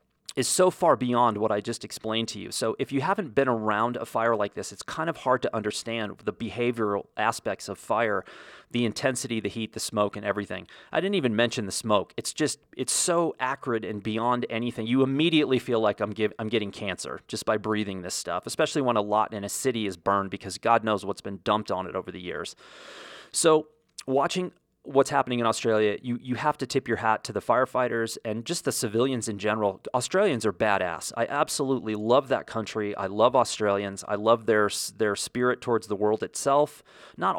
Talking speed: 210 wpm